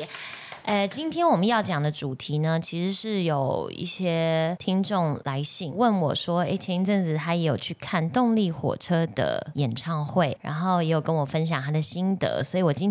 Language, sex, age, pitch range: Chinese, female, 20-39, 150-210 Hz